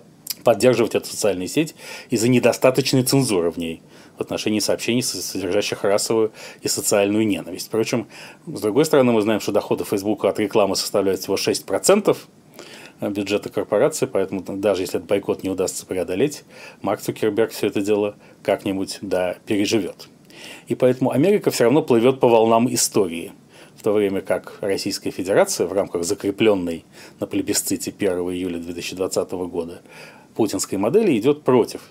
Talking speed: 145 wpm